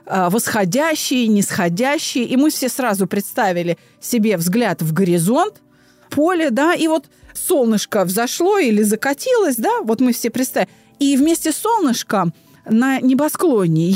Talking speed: 125 wpm